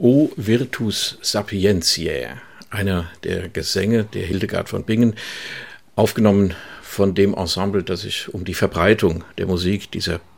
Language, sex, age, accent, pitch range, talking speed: German, male, 60-79, German, 95-115 Hz, 125 wpm